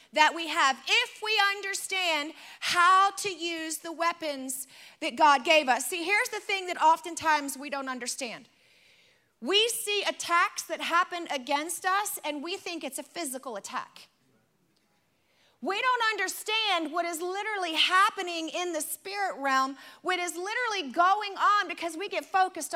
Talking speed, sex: 155 wpm, female